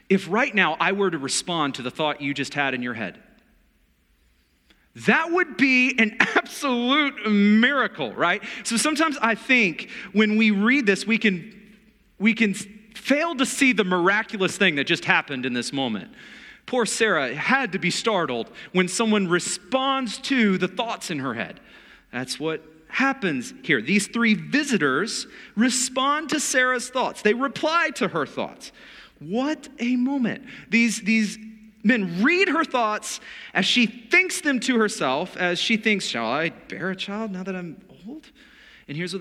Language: English